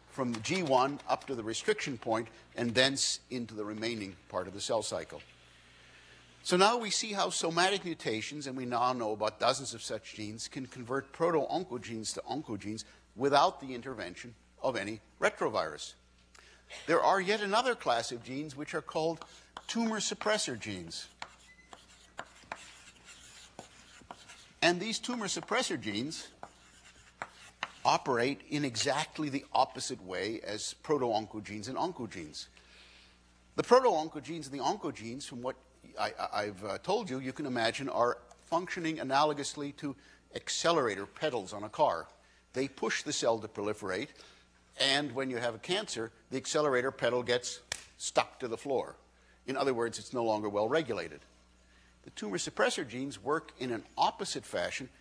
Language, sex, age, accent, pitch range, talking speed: English, male, 60-79, American, 105-150 Hz, 145 wpm